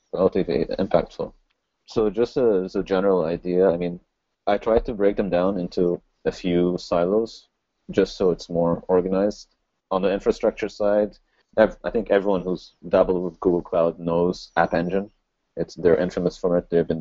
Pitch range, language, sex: 85-95 Hz, English, male